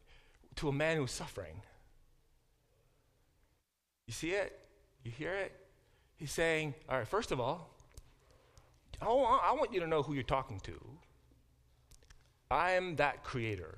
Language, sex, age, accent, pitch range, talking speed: English, male, 40-59, American, 110-140 Hz, 140 wpm